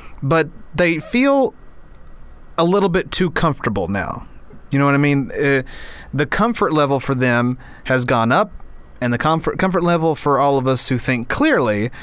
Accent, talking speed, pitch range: American, 170 wpm, 125-165 Hz